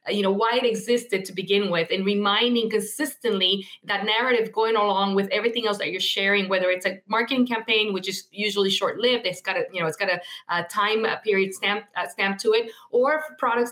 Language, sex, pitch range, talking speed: English, female, 200-250 Hz, 220 wpm